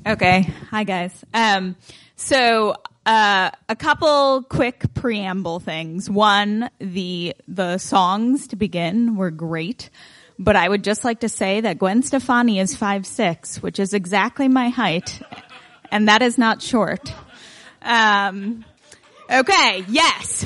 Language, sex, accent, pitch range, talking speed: English, female, American, 185-235 Hz, 130 wpm